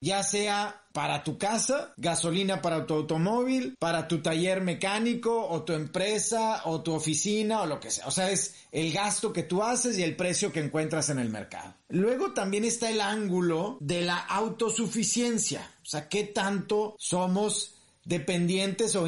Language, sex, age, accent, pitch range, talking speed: Spanish, male, 30-49, Mexican, 165-210 Hz, 170 wpm